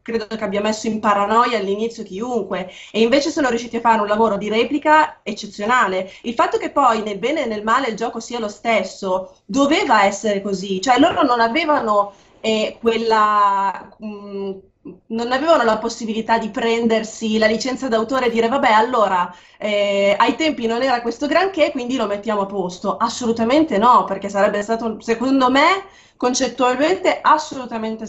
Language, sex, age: Italian, female, 20-39